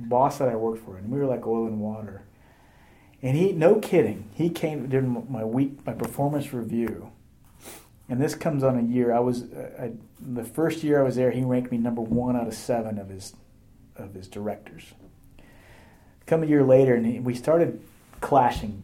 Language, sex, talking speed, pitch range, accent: English, male, 190 wpm, 110-135 Hz, American